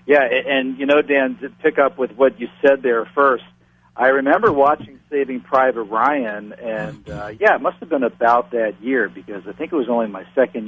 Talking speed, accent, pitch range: 215 wpm, American, 95-125 Hz